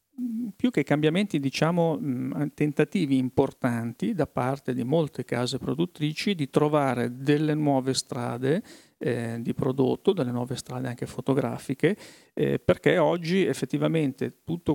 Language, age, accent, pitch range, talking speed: Italian, 40-59, native, 125-145 Hz, 120 wpm